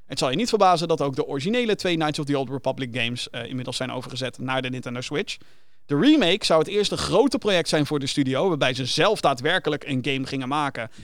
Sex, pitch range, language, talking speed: male, 140-175 Hz, Dutch, 235 wpm